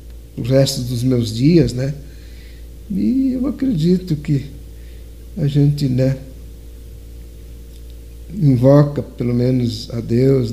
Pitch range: 115-150 Hz